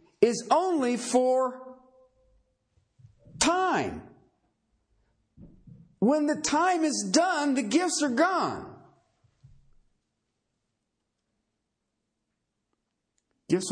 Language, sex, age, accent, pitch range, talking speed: English, male, 50-69, American, 135-220 Hz, 60 wpm